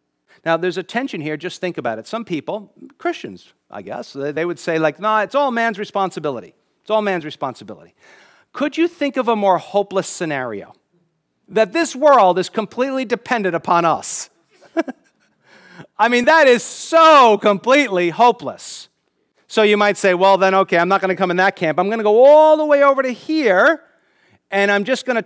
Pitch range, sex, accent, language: 180-255 Hz, male, American, English